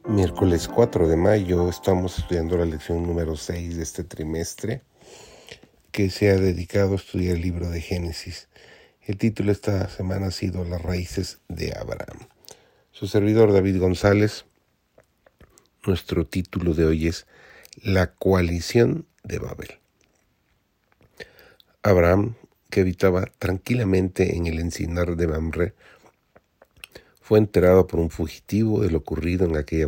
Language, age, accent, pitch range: Spanish, 40-59, Mexican, 85-100 Hz